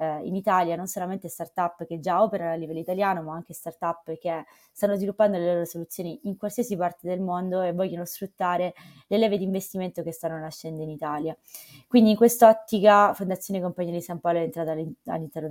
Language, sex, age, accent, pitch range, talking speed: Italian, female, 20-39, native, 165-195 Hz, 190 wpm